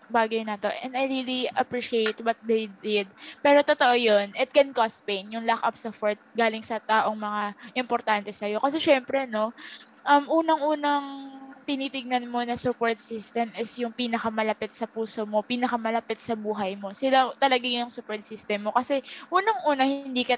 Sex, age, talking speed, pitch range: female, 20-39, 170 wpm, 225-275 Hz